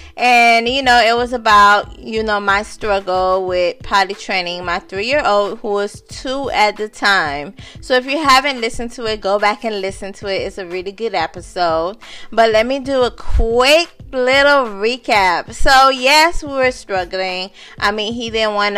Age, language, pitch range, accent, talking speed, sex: 20-39, English, 200-250 Hz, American, 190 wpm, female